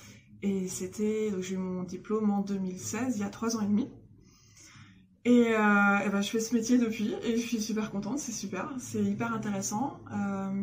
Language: French